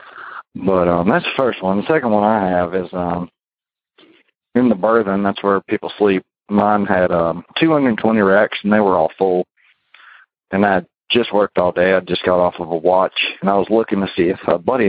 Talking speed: 210 wpm